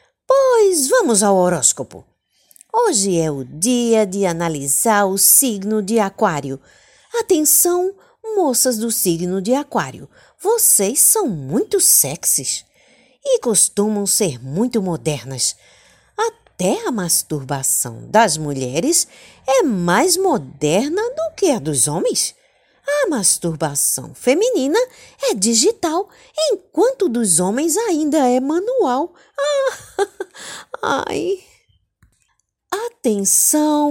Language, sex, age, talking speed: Portuguese, female, 50-69, 95 wpm